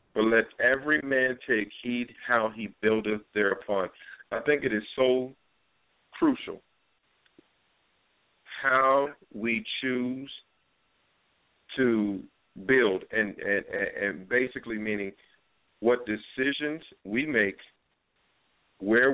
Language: English